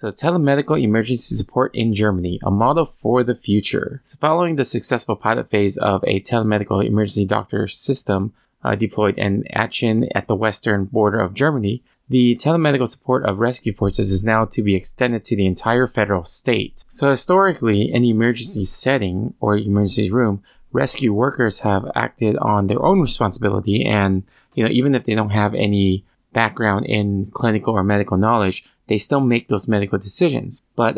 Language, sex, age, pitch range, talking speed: English, male, 20-39, 100-125 Hz, 170 wpm